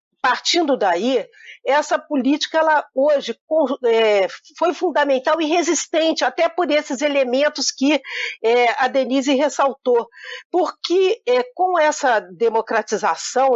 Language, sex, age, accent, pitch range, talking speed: Portuguese, female, 50-69, Brazilian, 230-305 Hz, 110 wpm